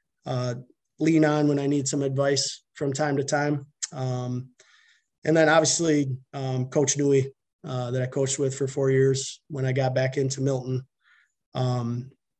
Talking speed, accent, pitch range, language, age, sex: 165 wpm, American, 130-150 Hz, English, 20-39, male